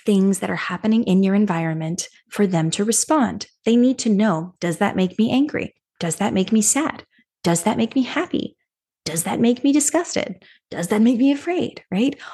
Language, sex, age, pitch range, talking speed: English, female, 20-39, 180-255 Hz, 200 wpm